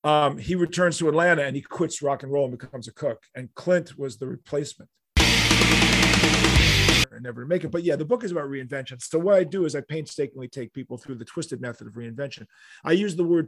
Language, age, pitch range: English, 40-59, 125-170 Hz